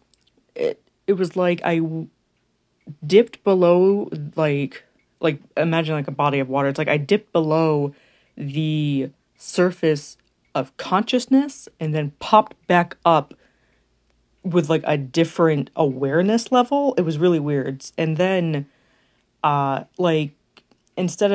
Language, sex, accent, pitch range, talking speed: English, female, American, 140-175 Hz, 125 wpm